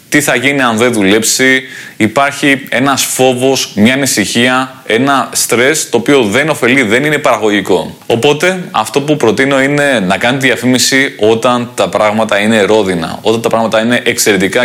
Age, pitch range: 20-39, 110-130 Hz